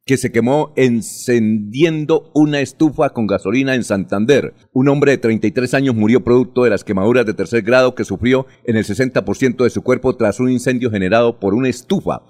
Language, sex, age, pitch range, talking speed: Spanish, male, 50-69, 105-125 Hz, 185 wpm